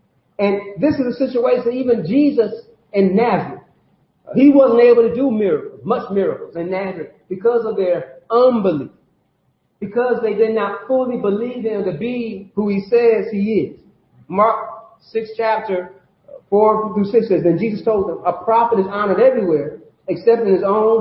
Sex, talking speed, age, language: male, 165 wpm, 40-59, English